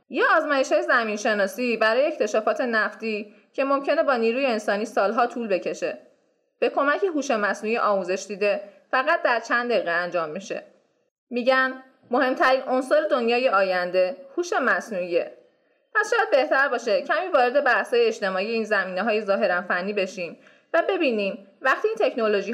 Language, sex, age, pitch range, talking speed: Persian, female, 20-39, 200-275 Hz, 140 wpm